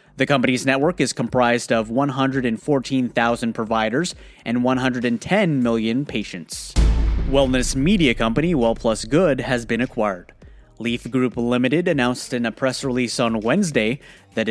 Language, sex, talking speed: English, male, 130 wpm